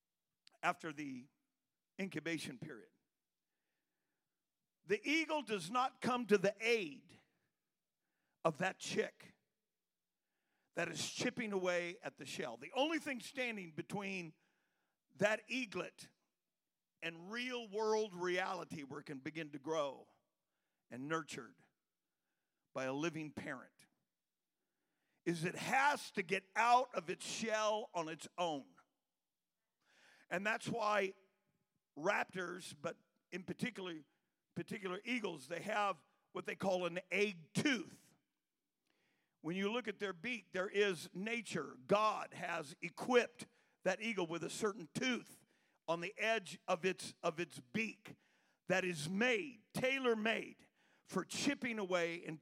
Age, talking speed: 50-69, 125 wpm